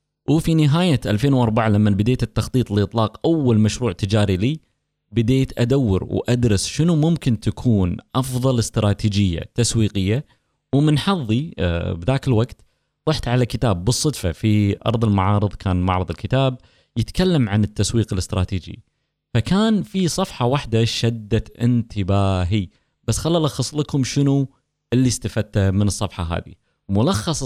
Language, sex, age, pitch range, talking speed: Arabic, male, 20-39, 105-135 Hz, 120 wpm